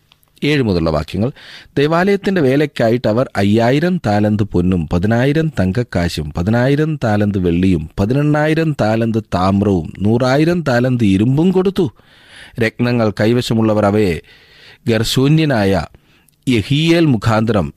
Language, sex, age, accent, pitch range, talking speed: Malayalam, male, 30-49, native, 95-135 Hz, 85 wpm